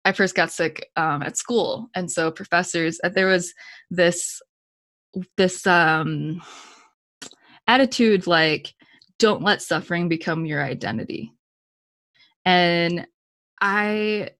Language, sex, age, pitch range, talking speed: English, female, 20-39, 170-195 Hz, 105 wpm